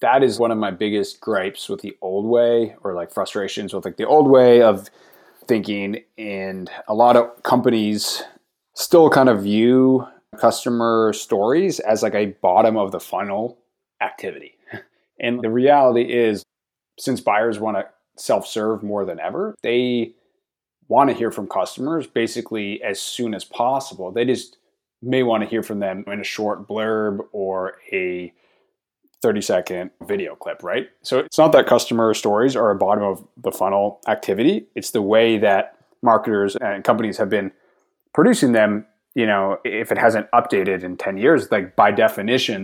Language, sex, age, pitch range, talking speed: English, male, 20-39, 105-120 Hz, 160 wpm